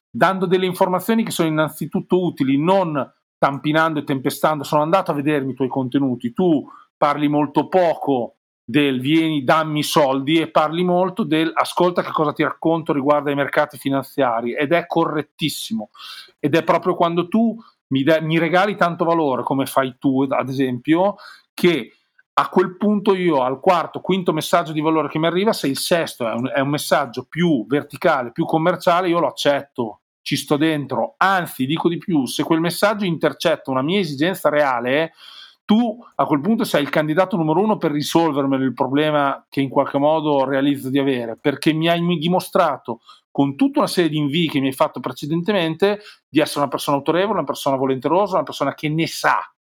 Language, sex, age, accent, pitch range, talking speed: Italian, male, 40-59, native, 140-180 Hz, 180 wpm